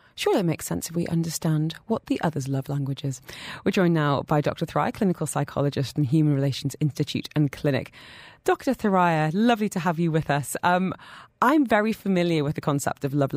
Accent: British